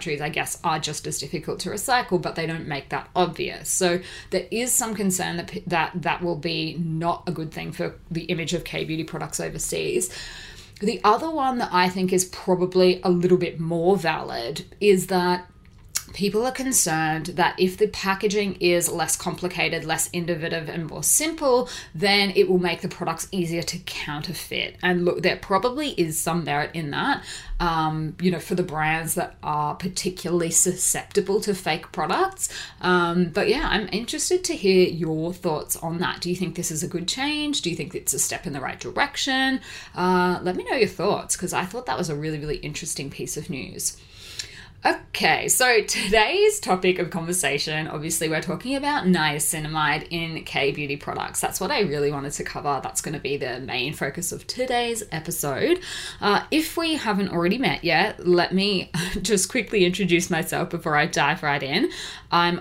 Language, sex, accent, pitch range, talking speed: English, female, Australian, 160-200 Hz, 185 wpm